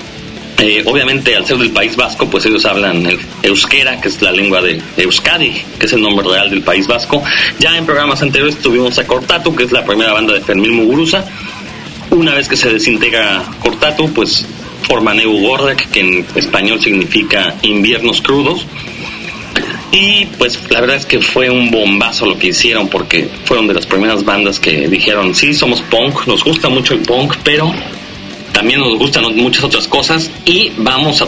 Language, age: Spanish, 40-59